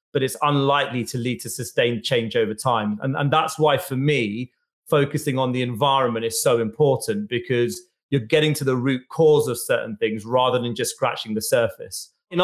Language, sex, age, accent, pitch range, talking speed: English, male, 30-49, British, 130-160 Hz, 195 wpm